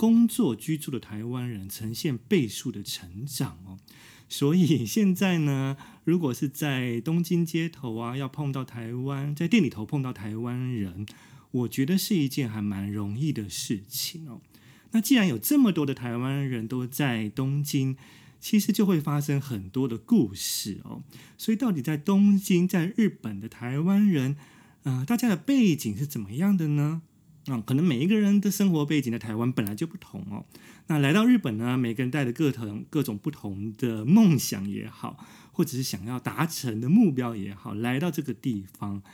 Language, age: Chinese, 30-49